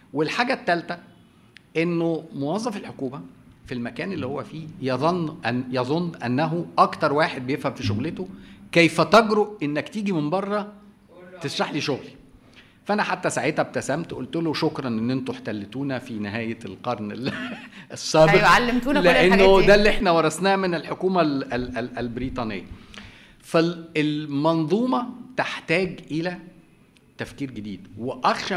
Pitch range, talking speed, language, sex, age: 125-175 Hz, 120 wpm, Arabic, male, 50-69